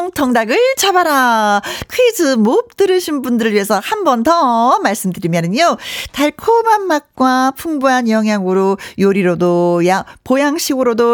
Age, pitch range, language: 40-59, 205-315 Hz, Korean